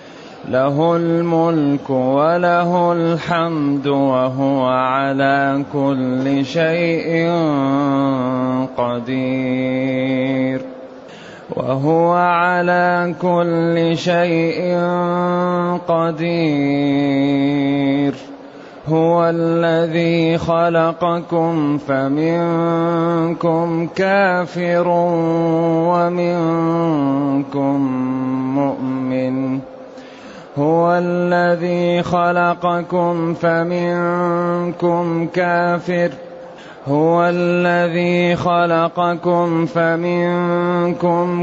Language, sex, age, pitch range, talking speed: Arabic, male, 30-49, 150-175 Hz, 40 wpm